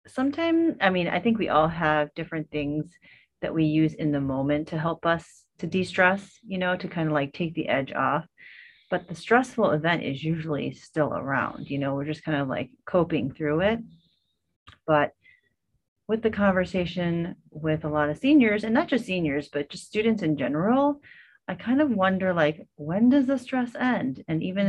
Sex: female